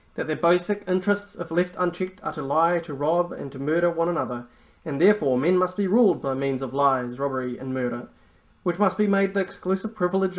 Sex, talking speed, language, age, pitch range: male, 215 wpm, English, 30-49, 150-195 Hz